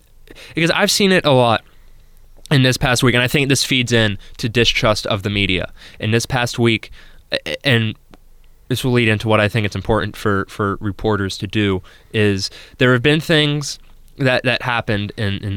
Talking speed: 195 wpm